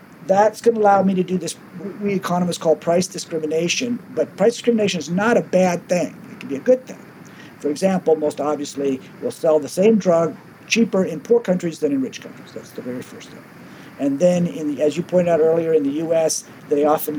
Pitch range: 160-210 Hz